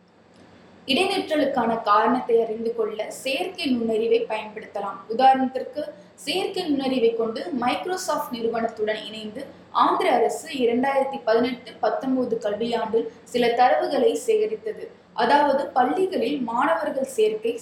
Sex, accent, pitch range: female, native, 225-295 Hz